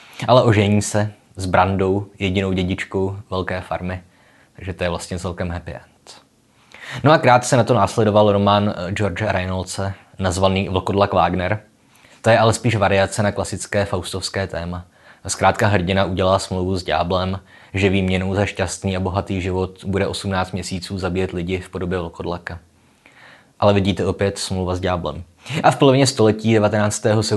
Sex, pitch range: male, 95-105 Hz